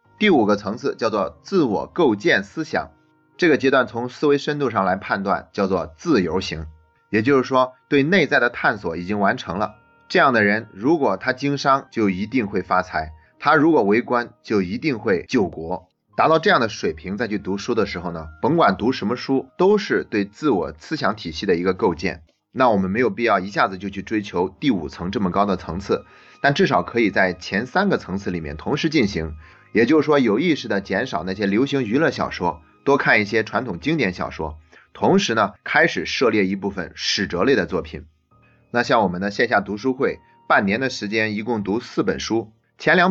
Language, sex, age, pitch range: Chinese, male, 30-49, 90-125 Hz